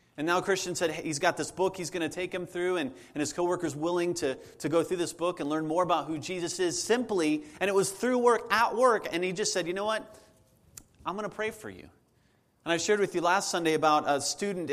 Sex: male